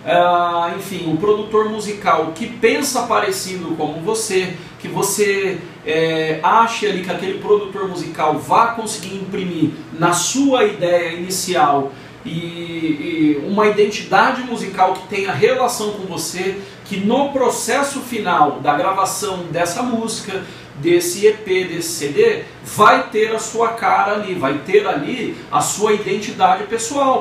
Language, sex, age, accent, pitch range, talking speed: Portuguese, male, 40-59, Brazilian, 170-225 Hz, 135 wpm